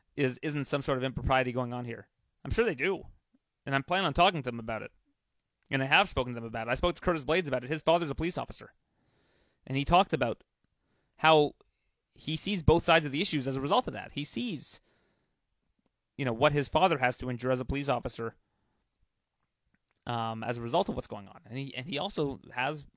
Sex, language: male, English